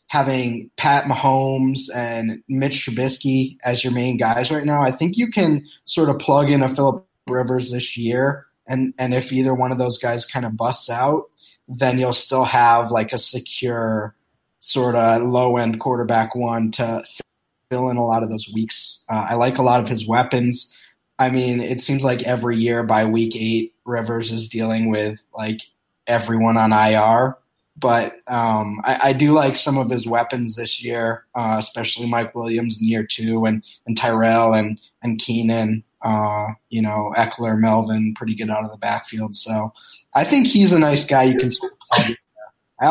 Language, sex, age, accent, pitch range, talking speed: English, male, 20-39, American, 115-130 Hz, 180 wpm